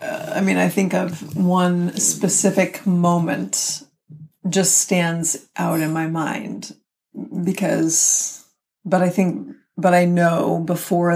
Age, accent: 30-49, American